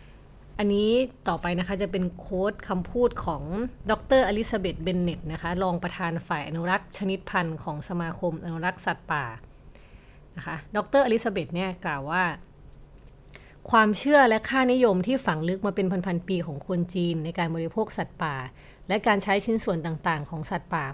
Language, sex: Thai, female